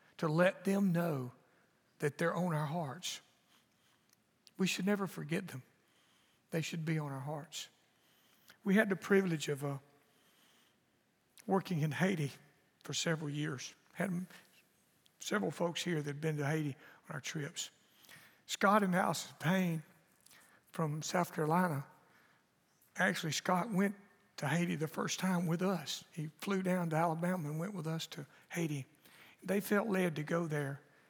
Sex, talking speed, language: male, 150 wpm, English